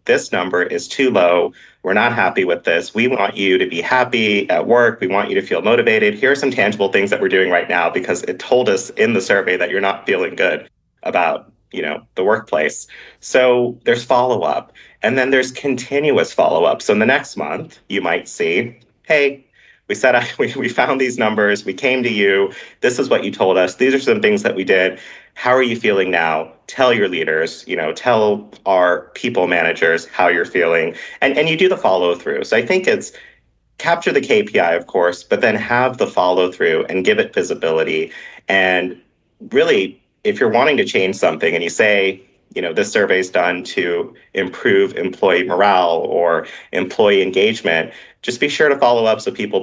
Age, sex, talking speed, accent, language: 30-49, male, 195 wpm, American, English